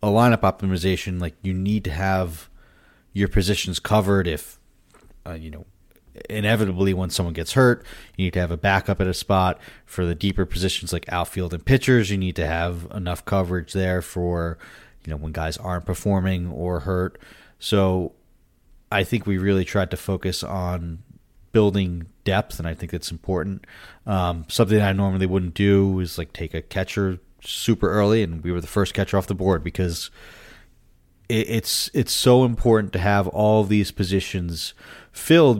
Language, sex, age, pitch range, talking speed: English, male, 30-49, 85-100 Hz, 175 wpm